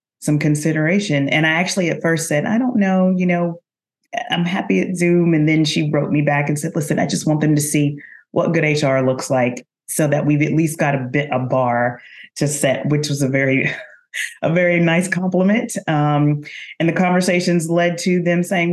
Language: English